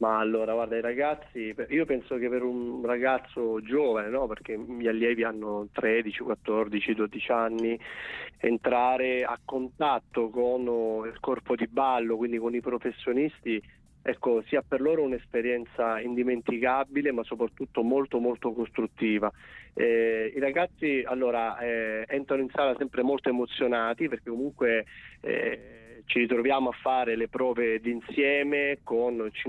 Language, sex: Italian, male